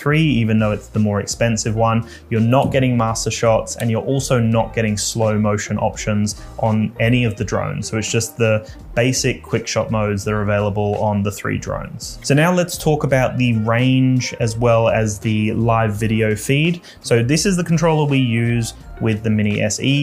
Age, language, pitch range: 20-39, English, 110-125 Hz